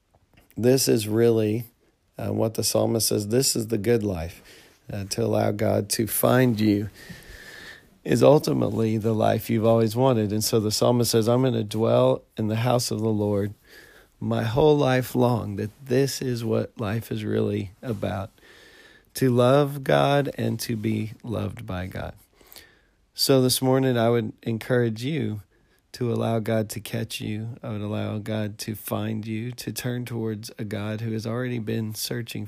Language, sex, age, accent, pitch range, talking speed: English, male, 40-59, American, 105-120 Hz, 170 wpm